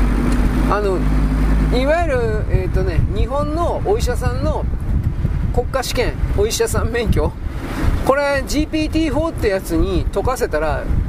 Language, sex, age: Japanese, male, 40-59